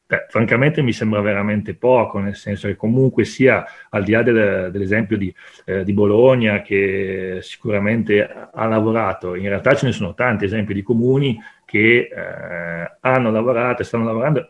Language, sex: Italian, male